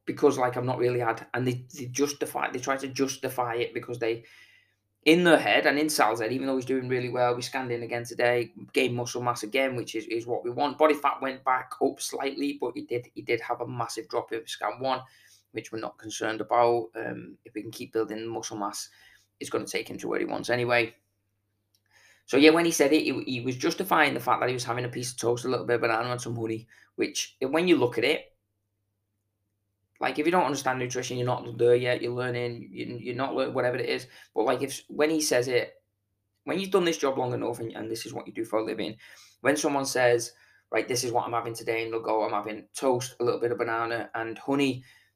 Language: English